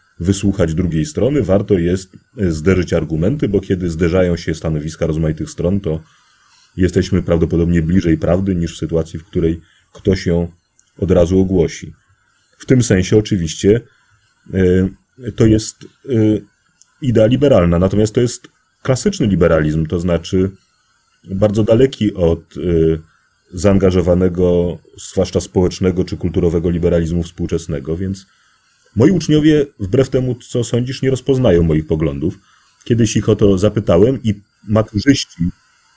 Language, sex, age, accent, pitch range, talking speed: Polish, male, 30-49, native, 85-110 Hz, 125 wpm